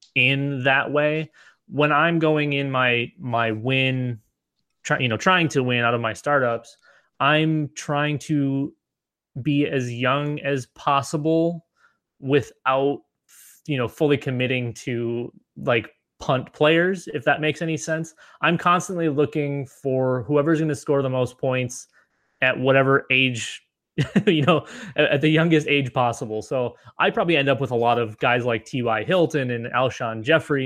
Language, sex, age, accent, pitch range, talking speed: English, male, 20-39, American, 115-145 Hz, 155 wpm